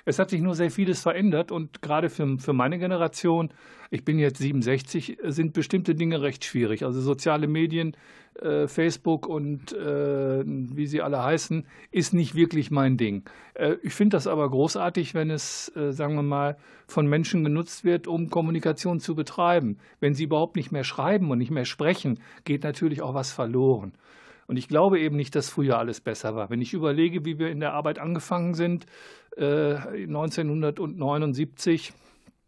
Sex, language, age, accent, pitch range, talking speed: male, German, 50-69, German, 140-170 Hz, 175 wpm